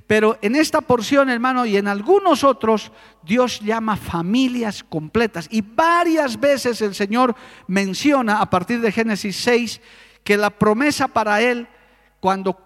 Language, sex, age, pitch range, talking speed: Spanish, male, 50-69, 205-265 Hz, 140 wpm